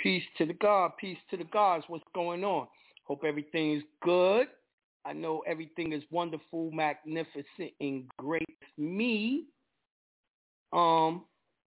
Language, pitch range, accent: English, 155-205 Hz, American